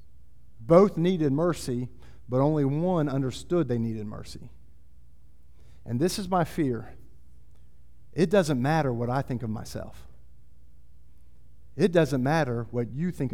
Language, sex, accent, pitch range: English, male, American, 115-195 Hz